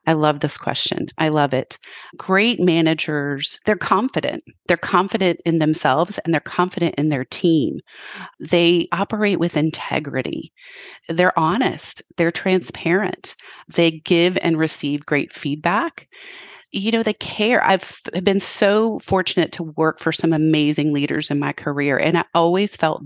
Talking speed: 145 wpm